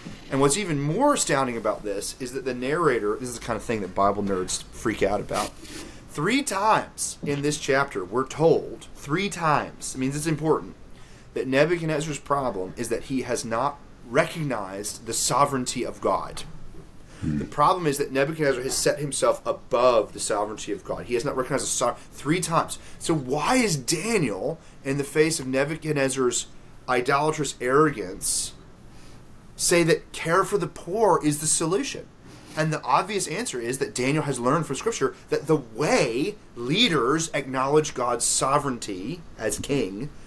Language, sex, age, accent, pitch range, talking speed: English, male, 30-49, American, 130-170 Hz, 165 wpm